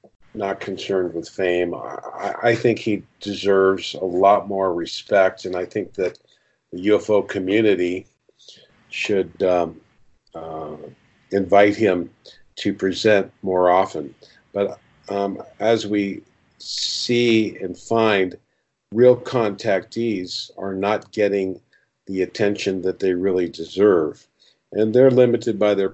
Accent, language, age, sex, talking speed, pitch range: American, English, 50-69, male, 120 wpm, 90-105 Hz